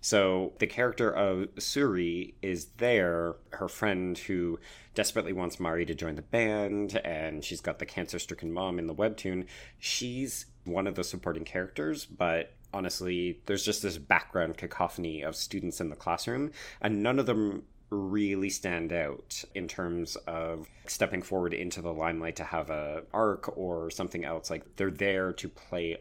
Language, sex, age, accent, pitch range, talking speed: English, male, 30-49, American, 85-105 Hz, 165 wpm